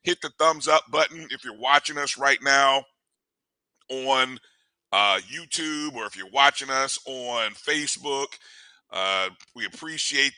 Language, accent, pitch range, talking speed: English, American, 130-160 Hz, 140 wpm